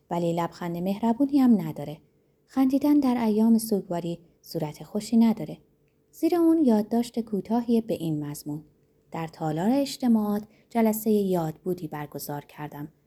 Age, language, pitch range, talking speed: 30-49, Persian, 150-225 Hz, 125 wpm